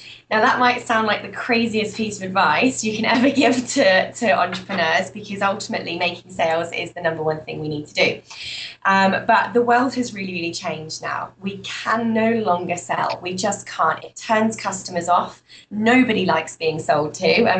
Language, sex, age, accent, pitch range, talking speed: English, female, 20-39, British, 170-225 Hz, 195 wpm